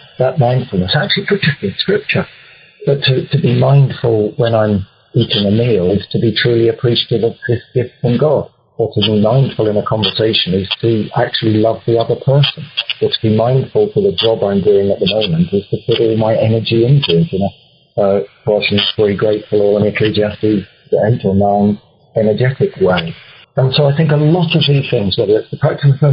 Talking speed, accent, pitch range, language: 200 wpm, British, 105-140 Hz, English